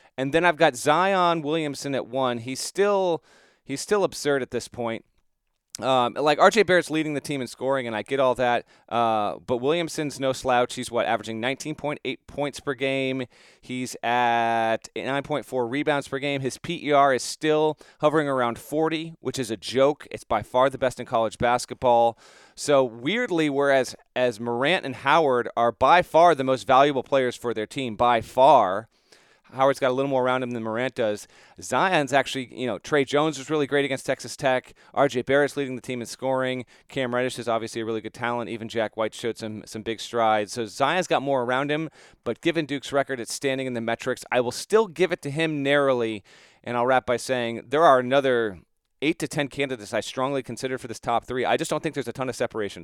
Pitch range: 120-145 Hz